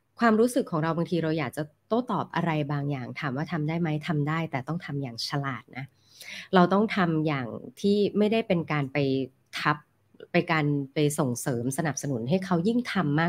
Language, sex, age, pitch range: Thai, female, 20-39, 145-190 Hz